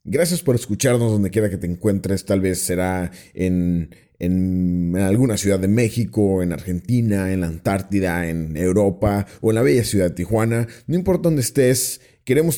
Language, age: Spanish, 30-49